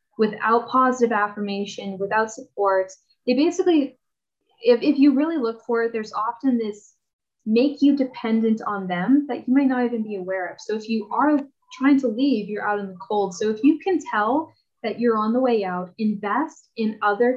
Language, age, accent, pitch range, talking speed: English, 10-29, American, 205-255 Hz, 195 wpm